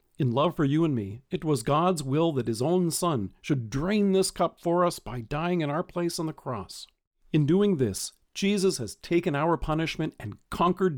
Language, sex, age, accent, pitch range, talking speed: English, male, 50-69, American, 135-185 Hz, 210 wpm